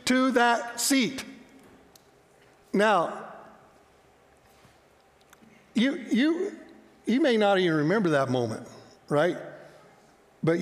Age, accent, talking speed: 60-79, American, 85 wpm